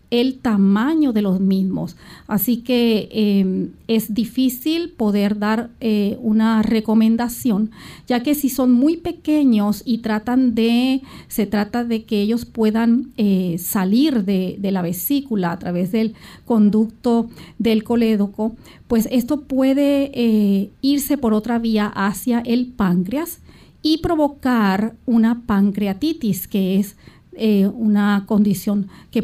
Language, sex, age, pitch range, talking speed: Spanish, female, 40-59, 205-255 Hz, 130 wpm